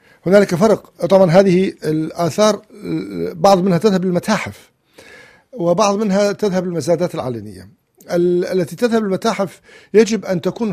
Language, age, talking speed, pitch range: Arabic, 50-69, 110 wpm, 150-195 Hz